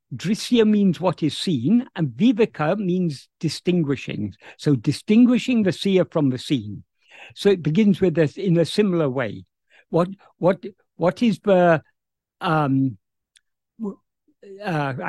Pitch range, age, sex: 145-200 Hz, 60-79, male